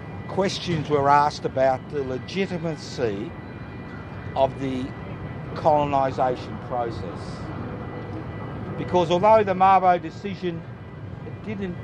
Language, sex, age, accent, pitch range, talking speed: English, male, 50-69, Australian, 125-155 Hz, 80 wpm